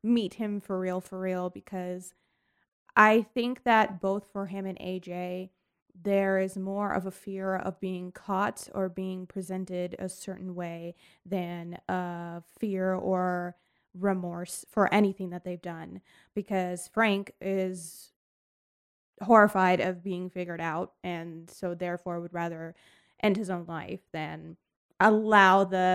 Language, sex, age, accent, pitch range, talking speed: English, female, 20-39, American, 180-210 Hz, 140 wpm